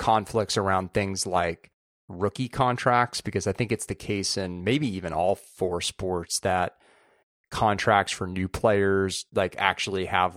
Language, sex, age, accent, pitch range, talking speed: English, male, 30-49, American, 95-115 Hz, 150 wpm